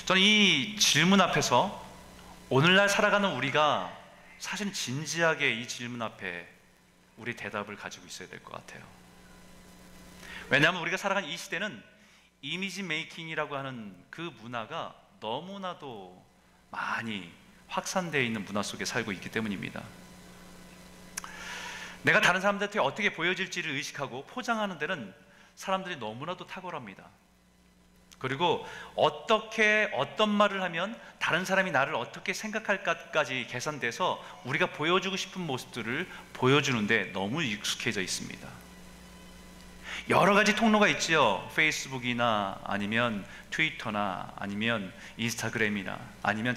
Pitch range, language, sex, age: 115-190 Hz, Korean, male, 30-49